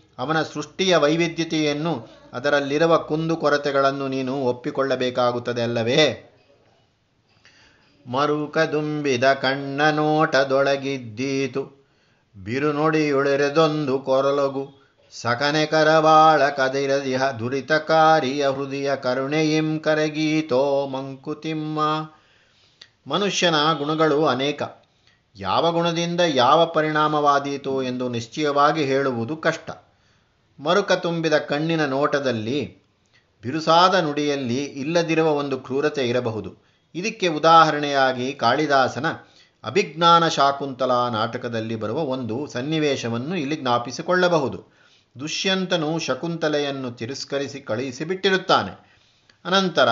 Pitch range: 130-155 Hz